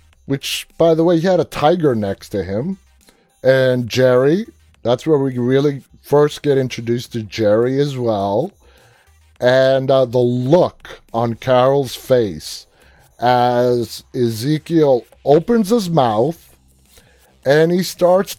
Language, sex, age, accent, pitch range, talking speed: English, male, 30-49, American, 120-175 Hz, 125 wpm